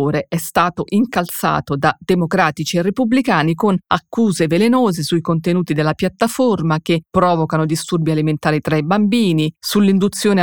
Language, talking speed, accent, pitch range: Italian, 125 wpm, native, 165-205 Hz